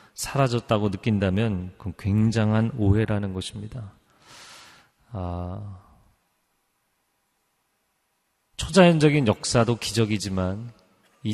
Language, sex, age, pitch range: Korean, male, 30-49, 100-135 Hz